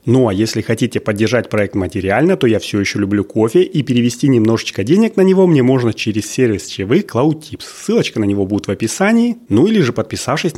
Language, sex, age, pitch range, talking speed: Russian, male, 30-49, 100-135 Hz, 205 wpm